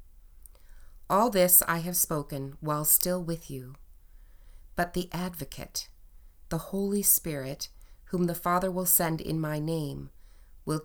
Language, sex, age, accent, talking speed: English, female, 30-49, American, 135 wpm